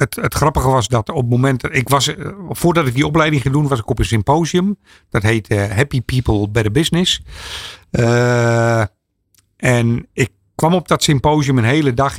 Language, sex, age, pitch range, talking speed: Dutch, male, 50-69, 105-140 Hz, 175 wpm